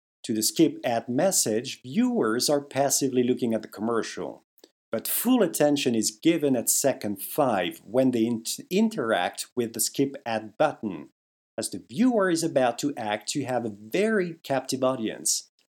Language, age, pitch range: English, 50-69, 115-165 Hz